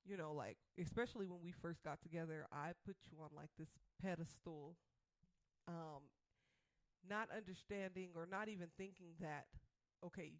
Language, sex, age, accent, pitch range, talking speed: English, female, 20-39, American, 165-205 Hz, 145 wpm